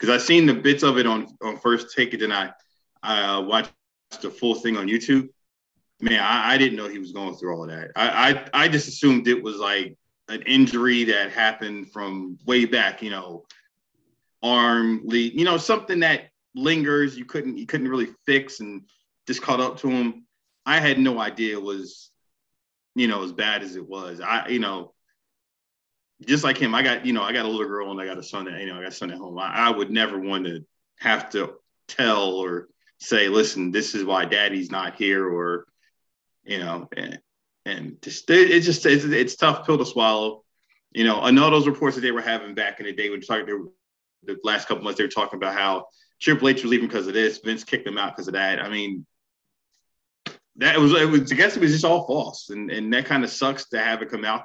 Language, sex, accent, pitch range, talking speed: English, male, American, 100-135 Hz, 230 wpm